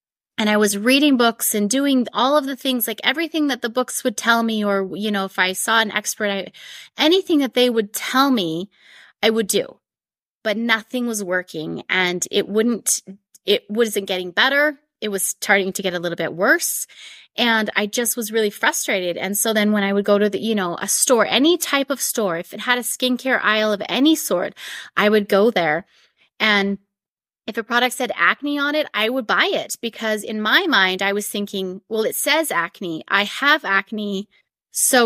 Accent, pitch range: American, 200-255 Hz